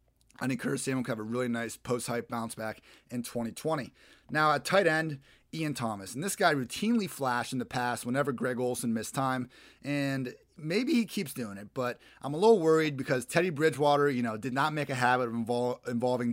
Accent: American